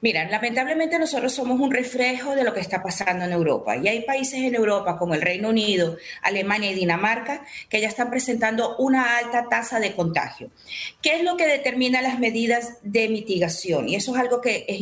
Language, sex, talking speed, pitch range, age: Spanish, female, 200 wpm, 205-265 Hz, 40-59